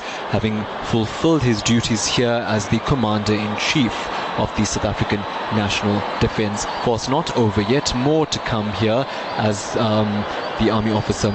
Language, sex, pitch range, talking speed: English, male, 105-125 Hz, 155 wpm